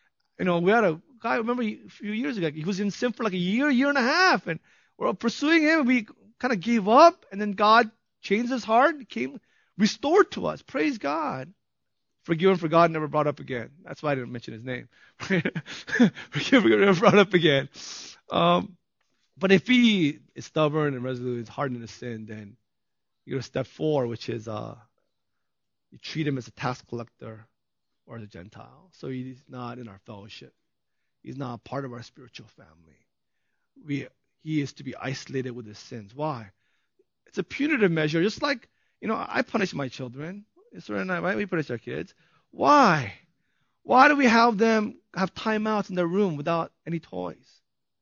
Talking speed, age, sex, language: 195 wpm, 30-49, male, English